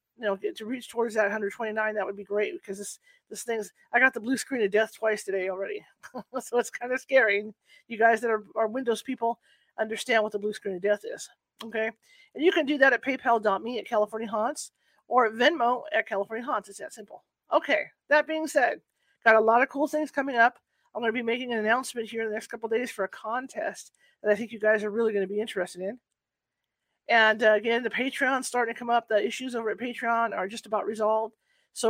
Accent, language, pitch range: American, English, 215-250 Hz